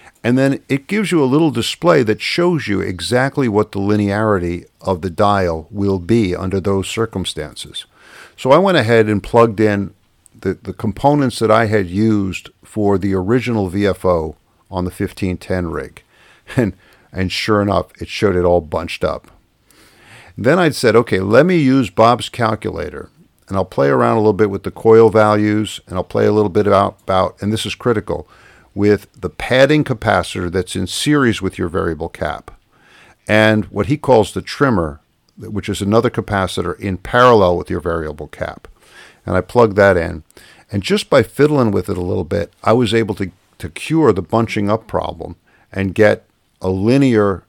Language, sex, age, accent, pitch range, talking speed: English, male, 50-69, American, 95-115 Hz, 180 wpm